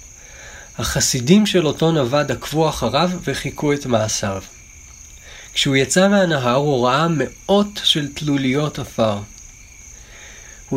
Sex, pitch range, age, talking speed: male, 110-150 Hz, 40-59, 105 wpm